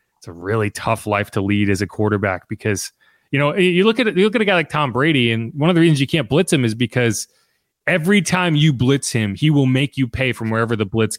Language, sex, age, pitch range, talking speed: English, male, 30-49, 115-180 Hz, 265 wpm